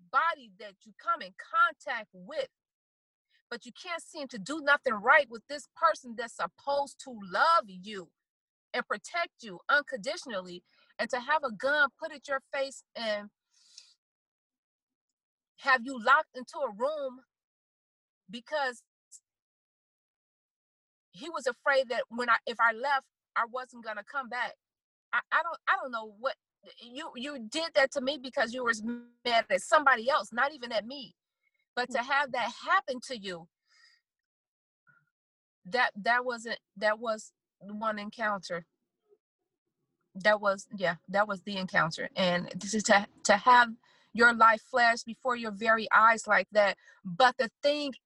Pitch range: 215-290 Hz